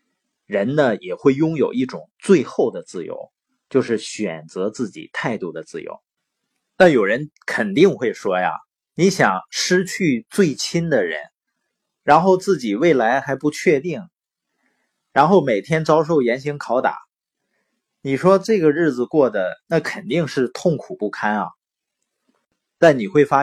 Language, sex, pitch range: Chinese, male, 120-185 Hz